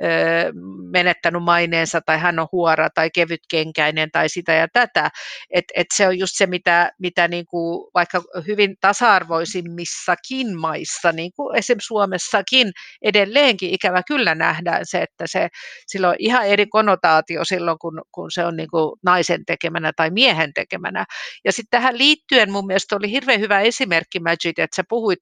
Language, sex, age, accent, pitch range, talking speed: Finnish, female, 50-69, native, 165-200 Hz, 155 wpm